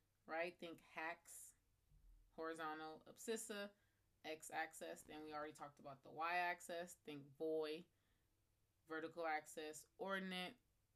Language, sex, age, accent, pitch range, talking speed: English, female, 20-39, American, 135-175 Hz, 100 wpm